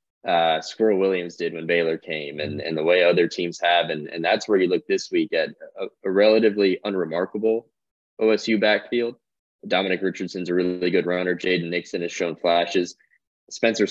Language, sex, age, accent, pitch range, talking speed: English, male, 20-39, American, 85-105 Hz, 175 wpm